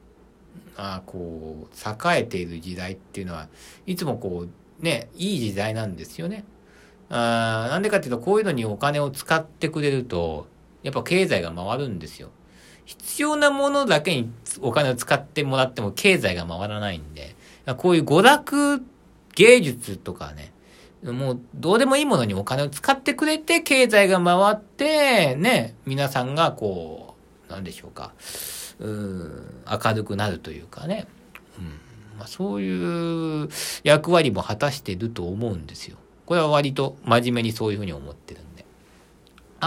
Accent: native